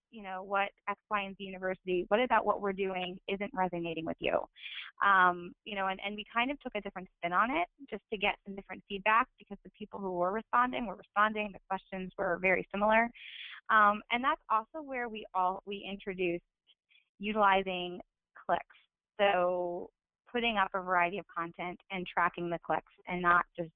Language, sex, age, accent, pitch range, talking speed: English, female, 20-39, American, 180-210 Hz, 190 wpm